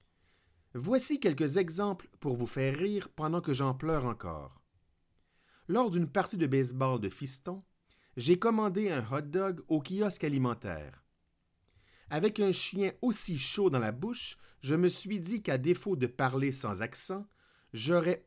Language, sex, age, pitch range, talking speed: French, male, 50-69, 120-190 Hz, 150 wpm